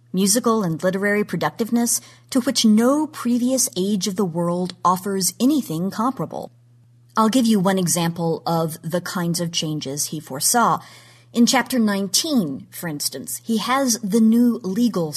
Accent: American